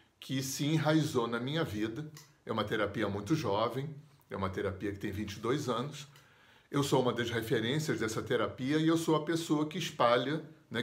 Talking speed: 185 wpm